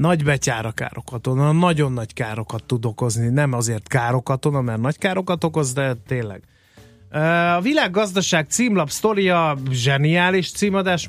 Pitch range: 125-160 Hz